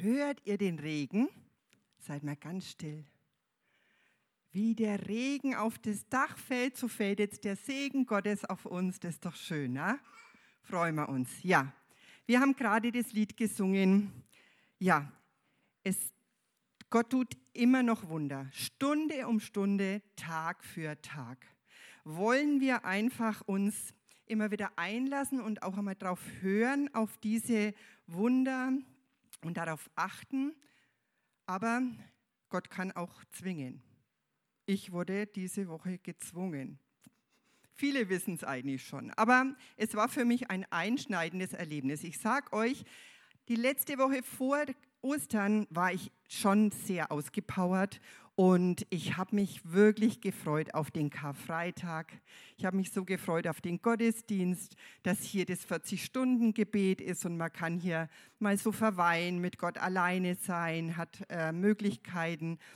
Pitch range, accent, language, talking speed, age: 175-230 Hz, German, German, 135 wpm, 50-69